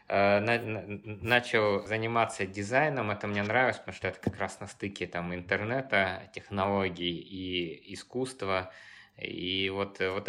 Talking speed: 120 wpm